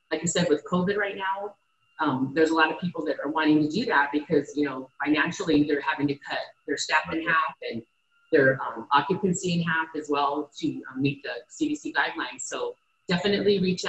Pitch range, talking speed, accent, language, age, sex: 150-200 Hz, 205 wpm, American, English, 30-49, female